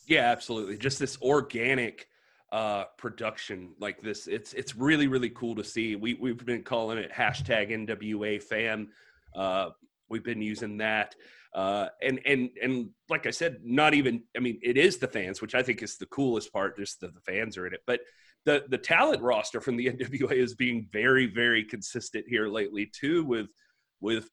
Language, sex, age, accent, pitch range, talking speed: English, male, 30-49, American, 115-135 Hz, 185 wpm